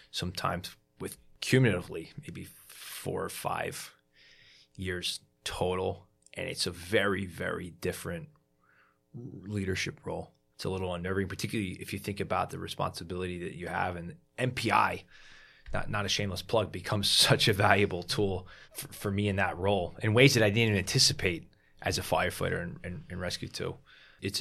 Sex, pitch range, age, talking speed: male, 90-105 Hz, 20-39, 155 wpm